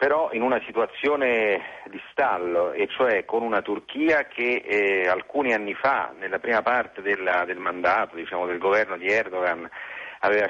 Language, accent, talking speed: Italian, native, 150 wpm